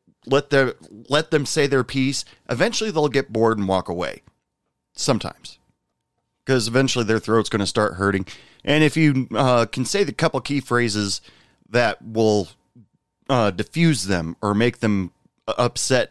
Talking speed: 155 wpm